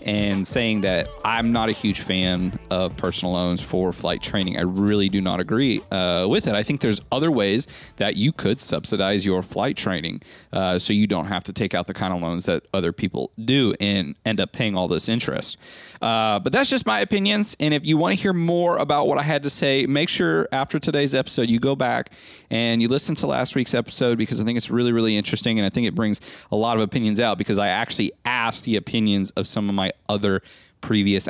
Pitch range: 100-130 Hz